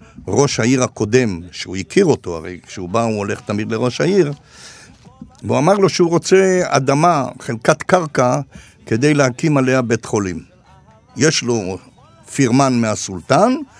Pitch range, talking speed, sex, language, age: 115-160 Hz, 135 wpm, male, Hebrew, 60-79